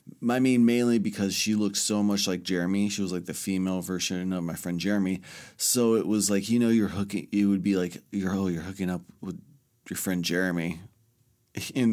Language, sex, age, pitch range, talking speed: English, male, 30-49, 95-115 Hz, 210 wpm